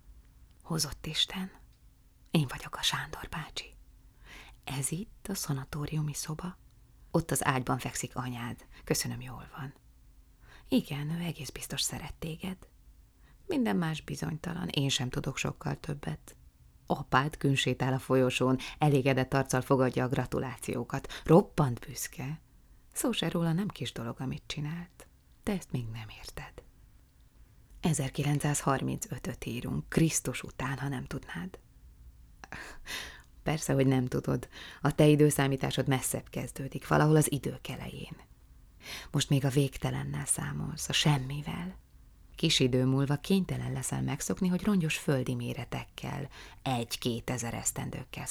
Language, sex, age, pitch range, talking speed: Hungarian, female, 30-49, 125-155 Hz, 120 wpm